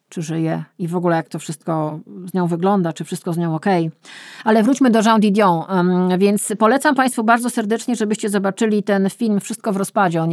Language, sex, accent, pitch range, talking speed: Polish, female, native, 165-200 Hz, 200 wpm